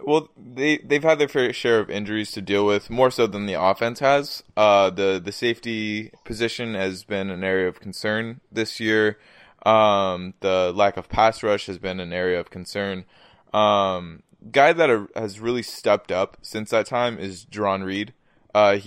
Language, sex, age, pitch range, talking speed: English, male, 20-39, 100-115 Hz, 185 wpm